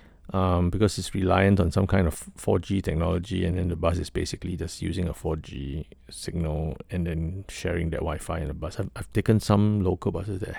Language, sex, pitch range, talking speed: English, male, 80-100 Hz, 205 wpm